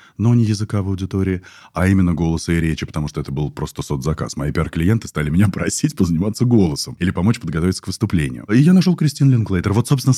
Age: 20-39